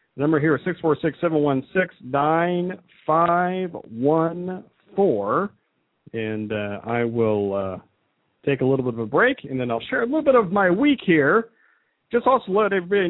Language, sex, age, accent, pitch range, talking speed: English, male, 50-69, American, 115-180 Hz, 140 wpm